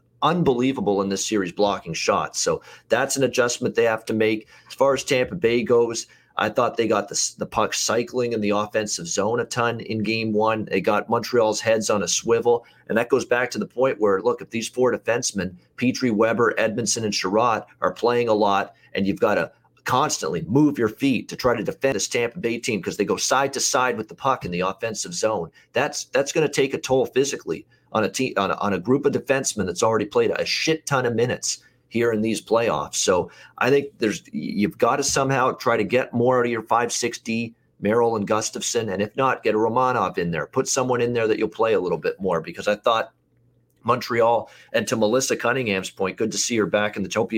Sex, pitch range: male, 110-135 Hz